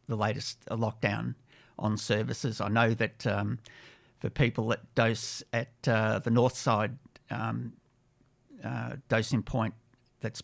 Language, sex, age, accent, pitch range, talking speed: English, male, 50-69, Australian, 110-130 Hz, 130 wpm